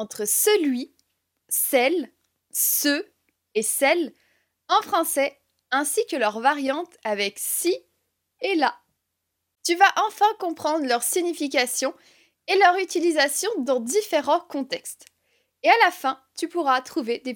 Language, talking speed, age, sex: French, 125 wpm, 20-39, female